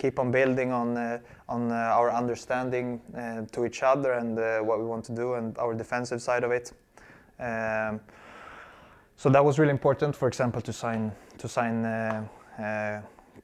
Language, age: English, 20-39